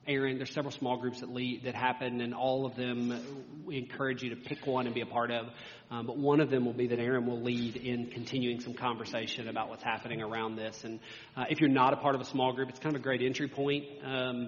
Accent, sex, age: American, male, 40-59